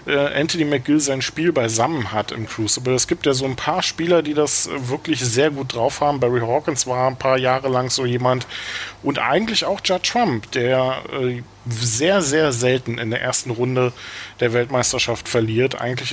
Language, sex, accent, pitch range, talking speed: German, male, German, 120-140 Hz, 180 wpm